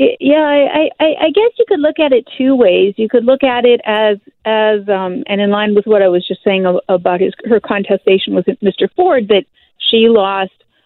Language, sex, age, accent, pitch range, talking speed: English, female, 40-59, American, 190-230 Hz, 215 wpm